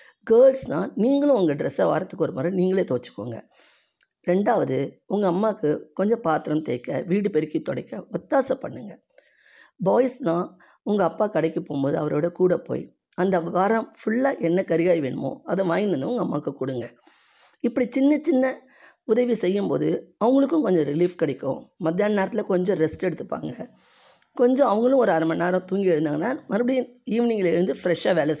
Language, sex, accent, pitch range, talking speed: Tamil, female, native, 160-230 Hz, 140 wpm